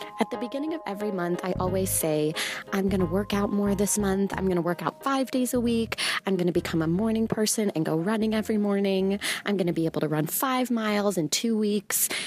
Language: English